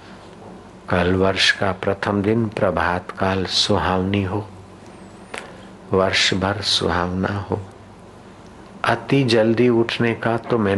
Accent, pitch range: native, 95-115 Hz